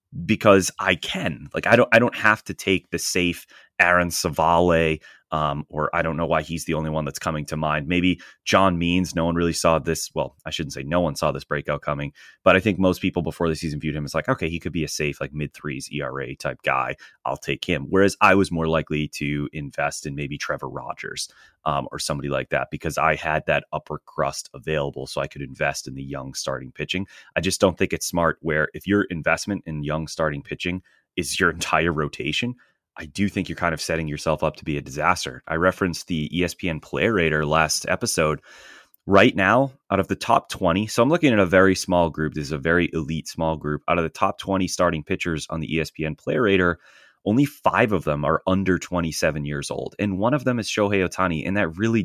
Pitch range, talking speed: 75-95 Hz, 230 wpm